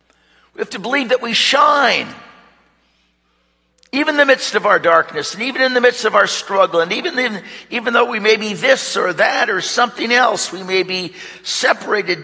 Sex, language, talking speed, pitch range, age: male, English, 190 wpm, 195-285 Hz, 60-79